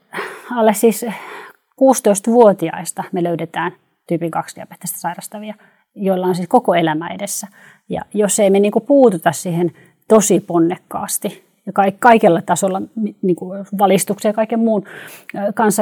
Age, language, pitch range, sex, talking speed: 30-49, Finnish, 190-220 Hz, female, 125 wpm